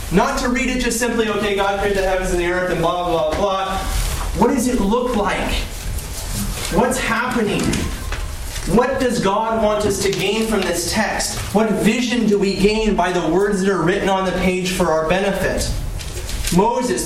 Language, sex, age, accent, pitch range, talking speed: English, male, 30-49, American, 150-205 Hz, 185 wpm